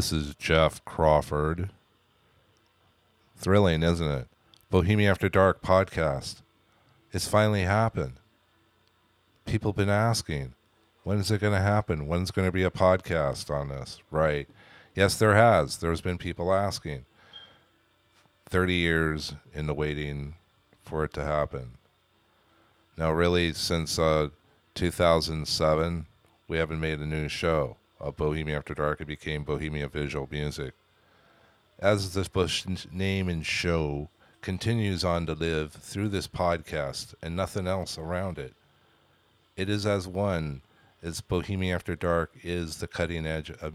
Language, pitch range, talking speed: English, 80-95 Hz, 140 wpm